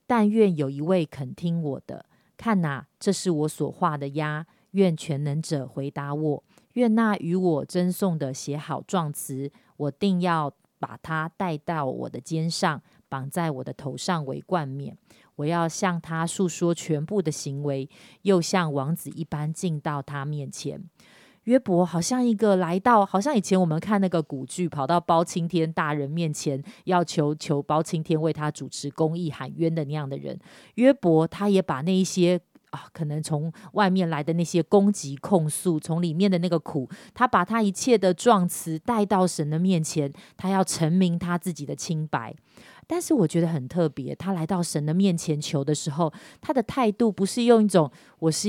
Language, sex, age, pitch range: Chinese, female, 30-49, 150-190 Hz